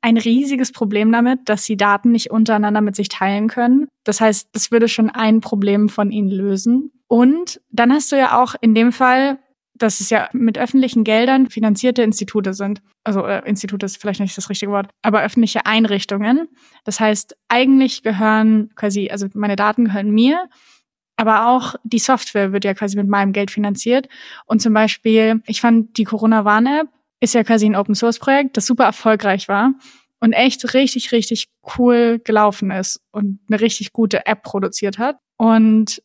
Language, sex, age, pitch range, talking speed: German, female, 20-39, 210-250 Hz, 175 wpm